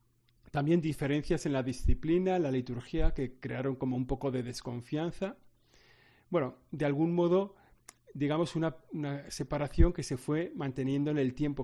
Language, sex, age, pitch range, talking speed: Spanish, male, 40-59, 130-160 Hz, 150 wpm